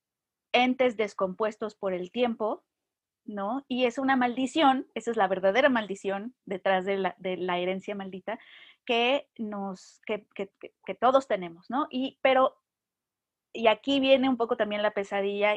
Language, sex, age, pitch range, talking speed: Spanish, female, 30-49, 195-235 Hz, 135 wpm